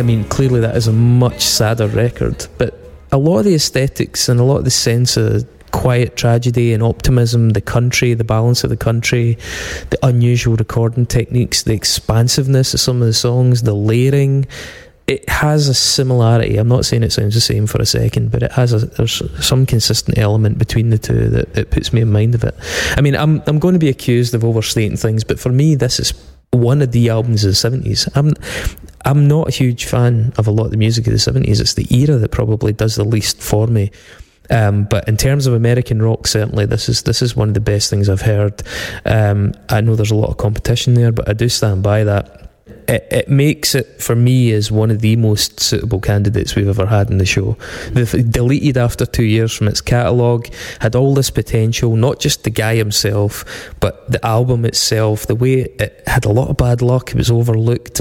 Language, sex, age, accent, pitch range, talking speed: English, male, 20-39, British, 110-130 Hz, 220 wpm